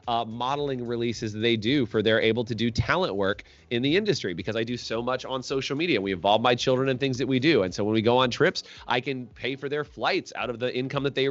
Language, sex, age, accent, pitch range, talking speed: English, male, 30-49, American, 110-130 Hz, 270 wpm